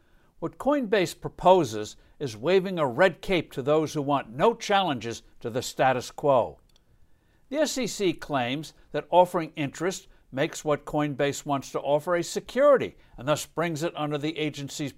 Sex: male